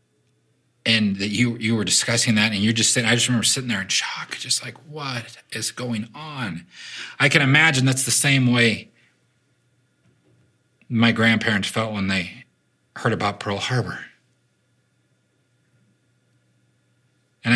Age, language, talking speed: 40-59, English, 140 wpm